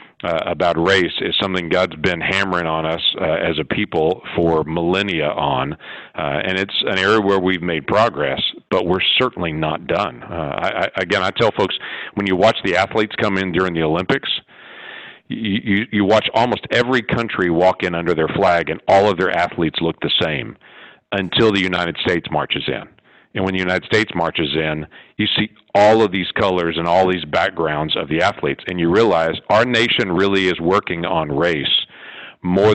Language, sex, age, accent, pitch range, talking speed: English, male, 50-69, American, 85-100 Hz, 190 wpm